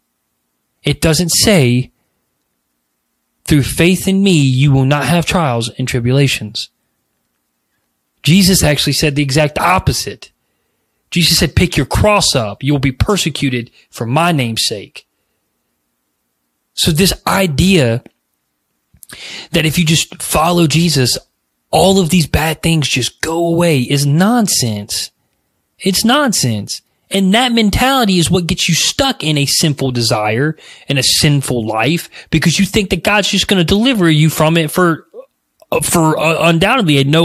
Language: English